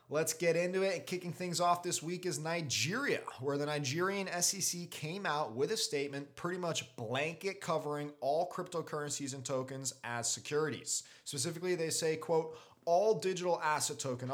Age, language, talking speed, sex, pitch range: 30-49, English, 160 wpm, male, 130-160 Hz